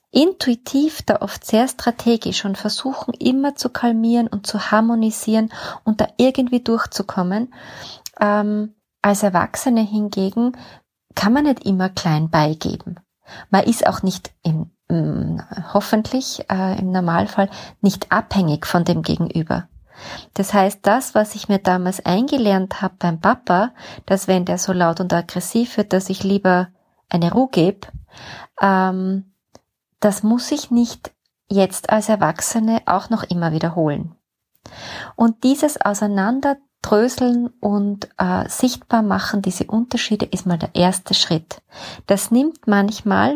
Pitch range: 185-230 Hz